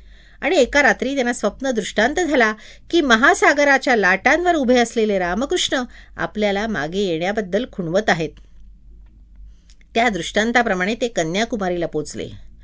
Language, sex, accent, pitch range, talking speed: Marathi, female, native, 185-275 Hz, 110 wpm